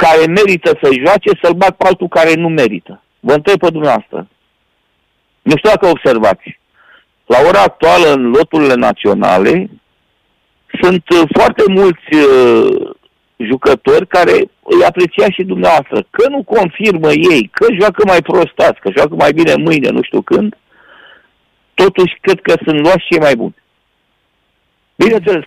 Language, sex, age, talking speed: Romanian, male, 50-69, 140 wpm